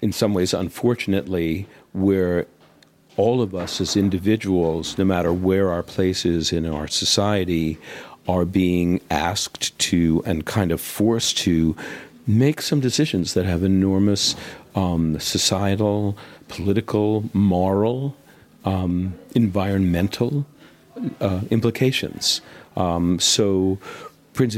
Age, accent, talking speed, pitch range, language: 50-69, American, 110 wpm, 85-105 Hz, English